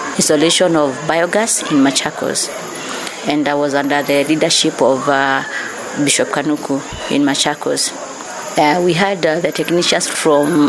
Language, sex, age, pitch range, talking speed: English, female, 30-49, 155-200 Hz, 135 wpm